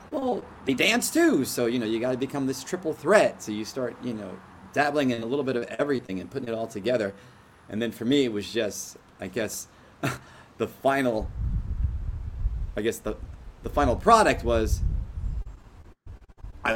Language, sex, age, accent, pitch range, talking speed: English, male, 30-49, American, 90-130 Hz, 175 wpm